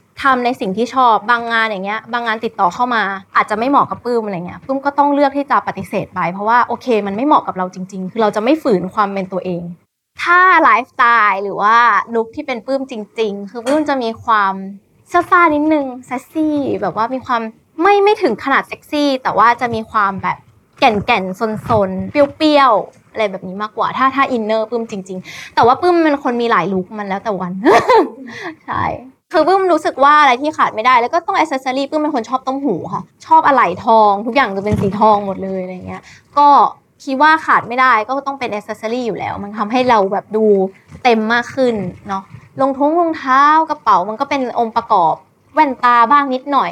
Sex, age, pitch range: female, 20-39, 210-285 Hz